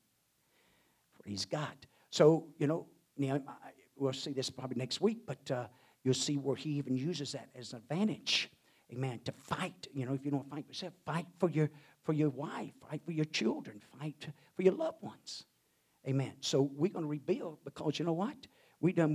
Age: 50-69